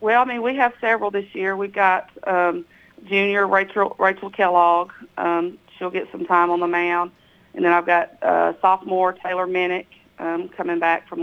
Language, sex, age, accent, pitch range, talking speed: English, female, 40-59, American, 170-185 Hz, 185 wpm